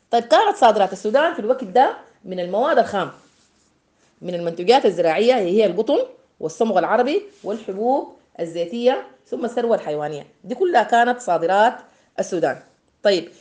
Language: Arabic